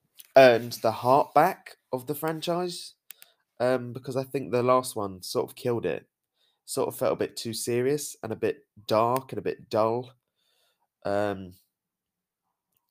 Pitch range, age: 100-135 Hz, 20-39